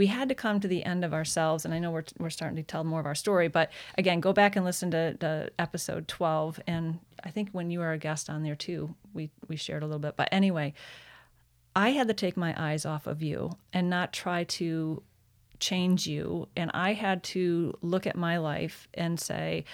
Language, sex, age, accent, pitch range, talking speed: English, female, 30-49, American, 165-185 Hz, 230 wpm